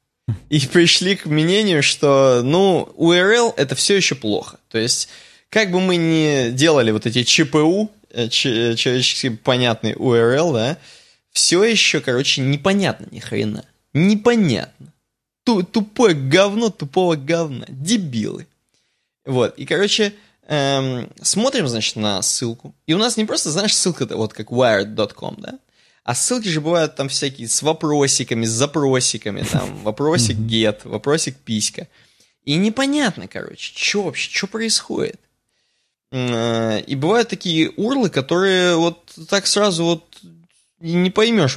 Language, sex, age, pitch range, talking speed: Russian, male, 20-39, 120-180 Hz, 130 wpm